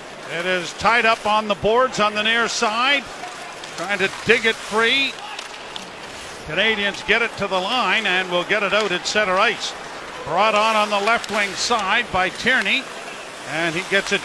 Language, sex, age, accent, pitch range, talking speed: English, male, 50-69, American, 190-230 Hz, 180 wpm